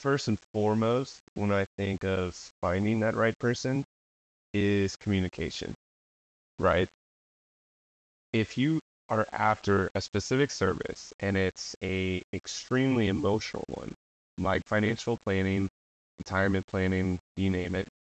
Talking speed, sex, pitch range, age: 115 wpm, male, 90-110 Hz, 20-39